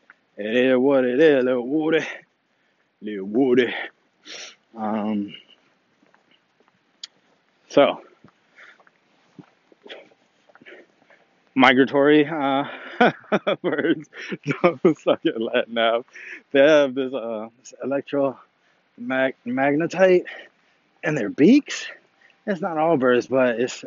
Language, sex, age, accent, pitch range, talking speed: English, male, 20-39, American, 115-140 Hz, 85 wpm